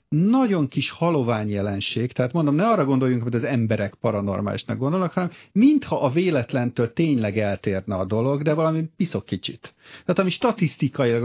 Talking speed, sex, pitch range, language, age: 155 wpm, male, 110-150 Hz, Hungarian, 50-69